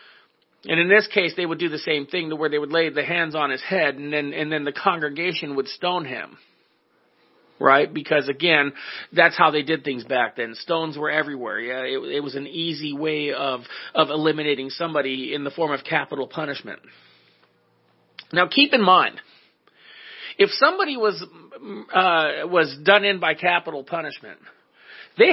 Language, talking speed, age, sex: English, 175 wpm, 40-59, male